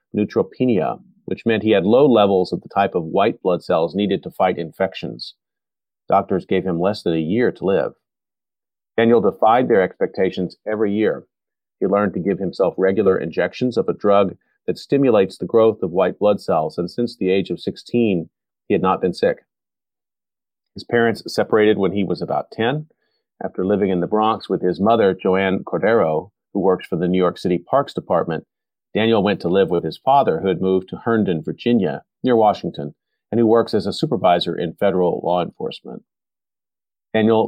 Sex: male